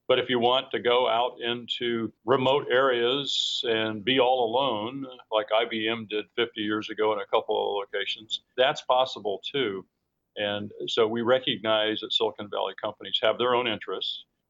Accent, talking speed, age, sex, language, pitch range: American, 165 wpm, 50-69, male, English, 105-120 Hz